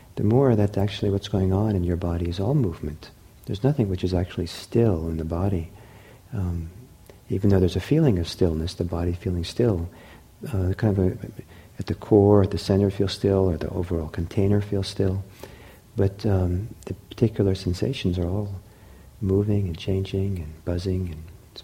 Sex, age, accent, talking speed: male, 50-69, American, 185 wpm